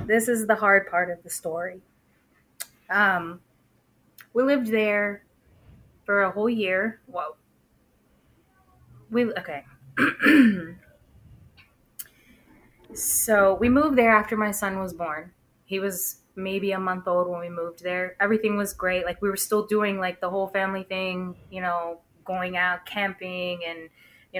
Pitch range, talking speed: 175-200 Hz, 140 wpm